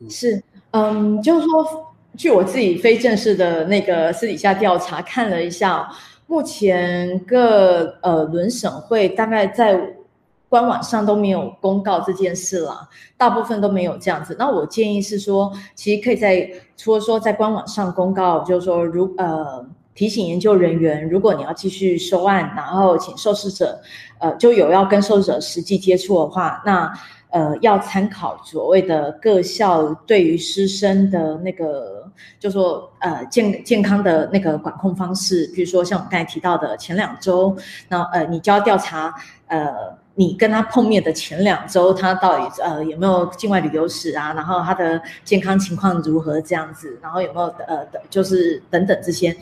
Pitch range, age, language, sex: 175-215 Hz, 20-39, Chinese, female